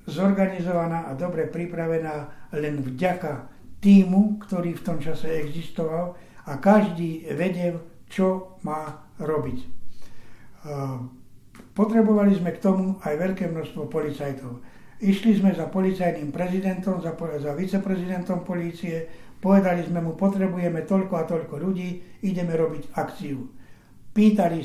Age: 60-79